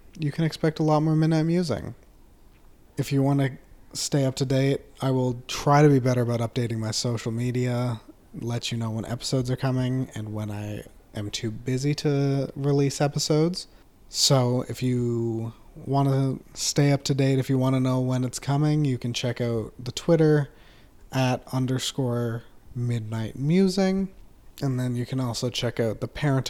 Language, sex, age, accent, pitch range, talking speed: English, male, 30-49, American, 115-140 Hz, 180 wpm